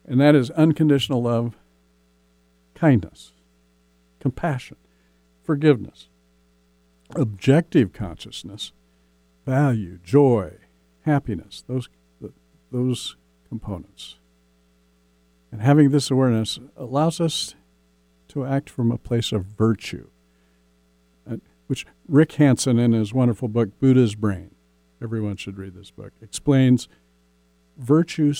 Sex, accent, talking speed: male, American, 95 wpm